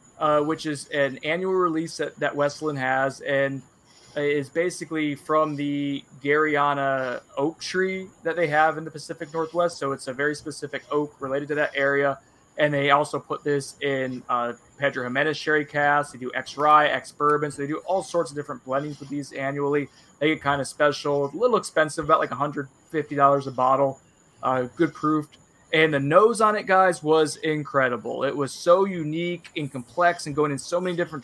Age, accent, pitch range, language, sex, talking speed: 20-39, American, 140-165 Hz, English, male, 185 wpm